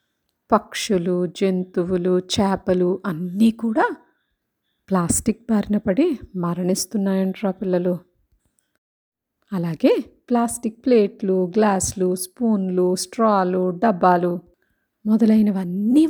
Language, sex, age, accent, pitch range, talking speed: Telugu, female, 50-69, native, 185-235 Hz, 65 wpm